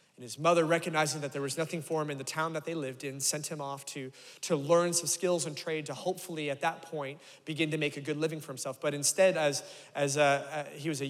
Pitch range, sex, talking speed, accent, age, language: 150-180 Hz, male, 265 wpm, American, 30-49, English